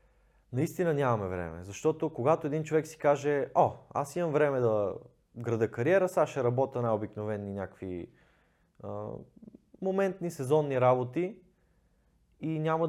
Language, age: Bulgarian, 20-39